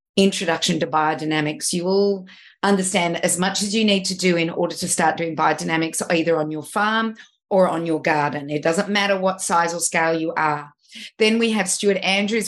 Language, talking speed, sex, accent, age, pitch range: English, 195 wpm, female, Australian, 30-49, 165-195 Hz